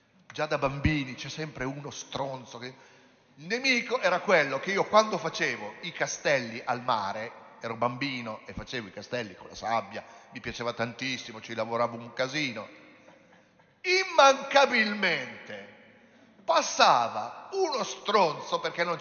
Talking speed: 135 wpm